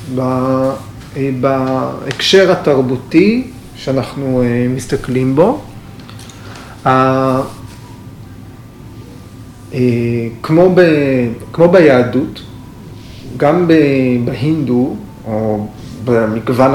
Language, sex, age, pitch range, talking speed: Hebrew, male, 30-49, 120-145 Hz, 40 wpm